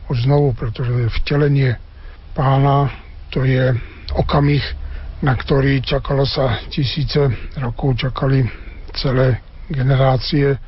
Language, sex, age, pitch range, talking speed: Slovak, male, 60-79, 110-135 Hz, 95 wpm